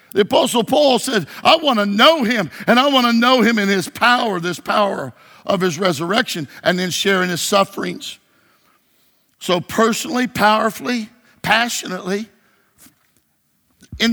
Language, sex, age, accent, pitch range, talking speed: English, male, 50-69, American, 170-220 Hz, 140 wpm